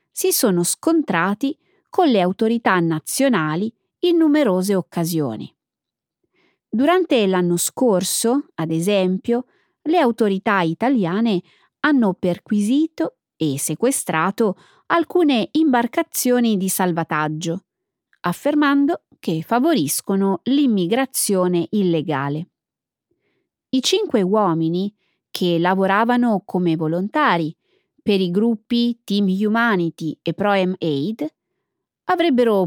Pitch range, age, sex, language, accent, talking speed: 175-260 Hz, 20-39, female, Italian, native, 85 wpm